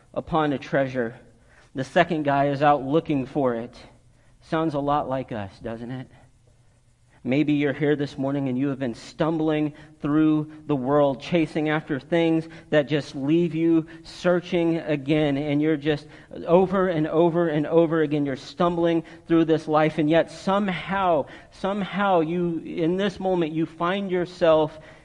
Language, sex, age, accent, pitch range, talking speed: English, male, 40-59, American, 140-165 Hz, 155 wpm